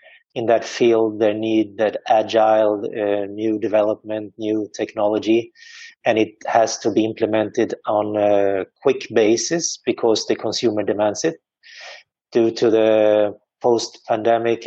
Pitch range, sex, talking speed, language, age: 110-120 Hz, male, 125 wpm, English, 30-49